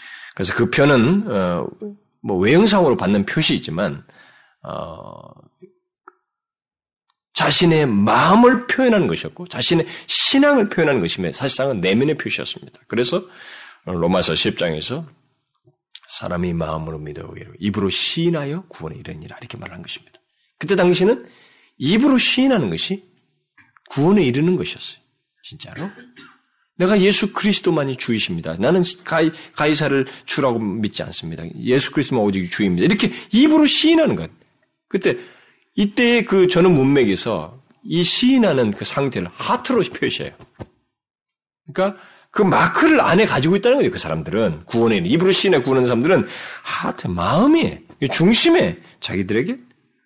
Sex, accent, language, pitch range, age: male, native, Korean, 125-210 Hz, 30-49